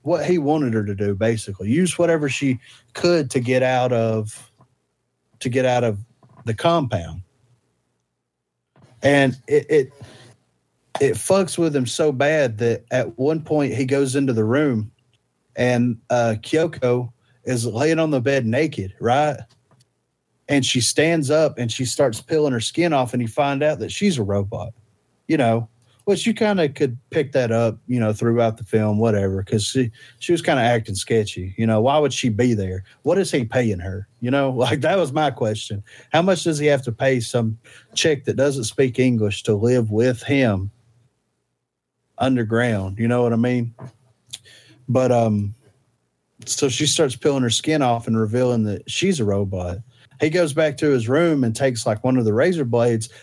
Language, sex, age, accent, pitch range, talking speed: English, male, 30-49, American, 115-140 Hz, 185 wpm